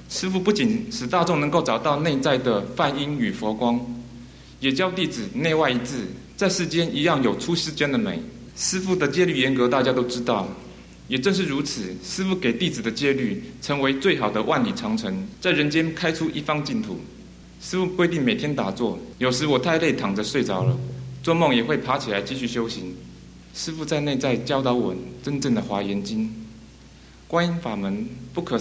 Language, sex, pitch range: English, male, 120-165 Hz